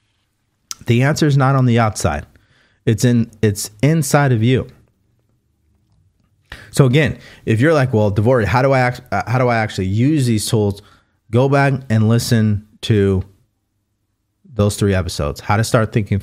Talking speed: 160 wpm